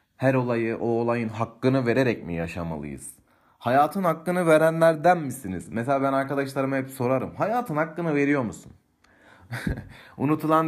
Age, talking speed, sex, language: 30-49, 125 wpm, male, Turkish